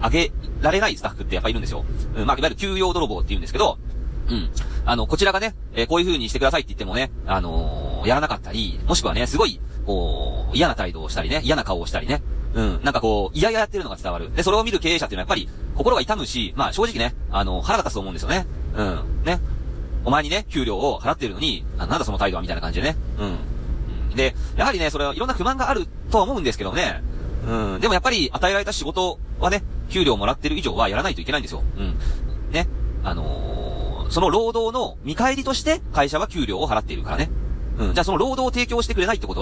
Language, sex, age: Japanese, male, 40-59